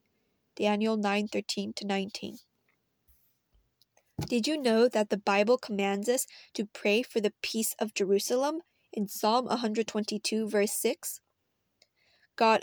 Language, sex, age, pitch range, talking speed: English, female, 20-39, 205-230 Hz, 110 wpm